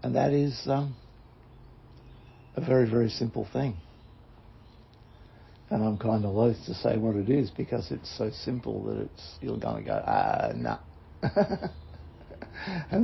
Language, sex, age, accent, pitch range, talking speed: English, male, 60-79, Australian, 85-120 Hz, 145 wpm